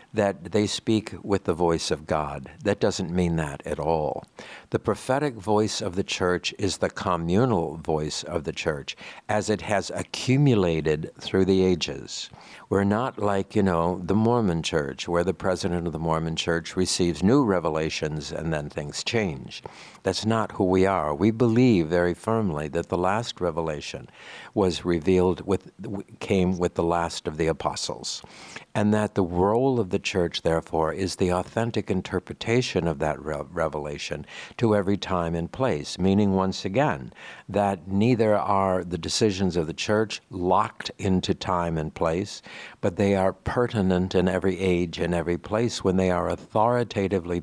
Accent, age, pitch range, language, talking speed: American, 60-79, 85-100 Hz, English, 165 wpm